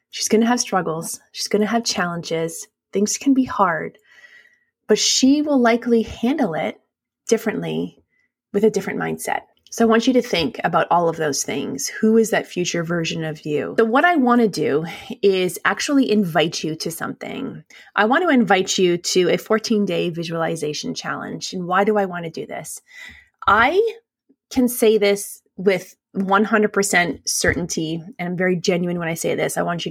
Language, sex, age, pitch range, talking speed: English, female, 20-39, 175-230 Hz, 185 wpm